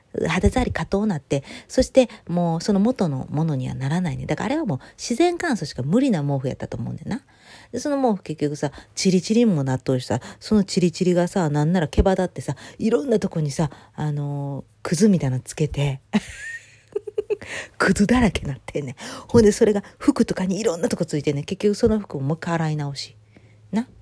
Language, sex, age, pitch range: Japanese, female, 40-59, 140-235 Hz